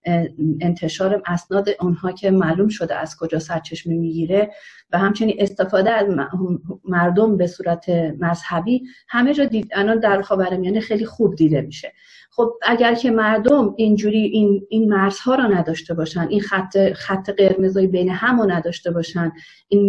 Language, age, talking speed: Persian, 40-59, 145 wpm